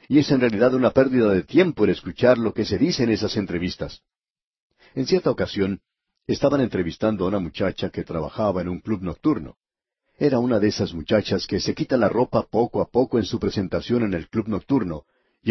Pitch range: 95-130 Hz